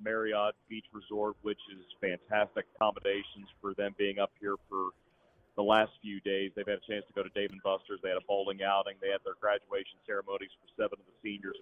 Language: English